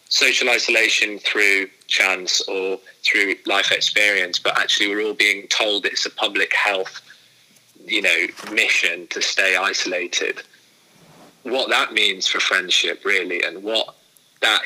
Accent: British